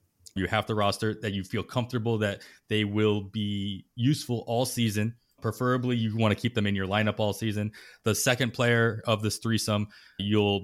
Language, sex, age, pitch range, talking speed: English, male, 20-39, 100-120 Hz, 185 wpm